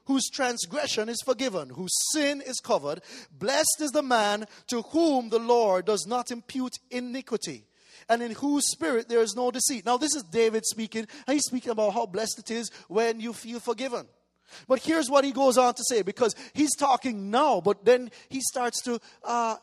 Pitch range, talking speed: 200-255 Hz, 185 wpm